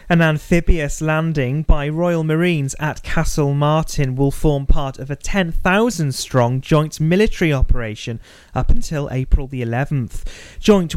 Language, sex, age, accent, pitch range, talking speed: English, male, 30-49, British, 130-165 Hz, 130 wpm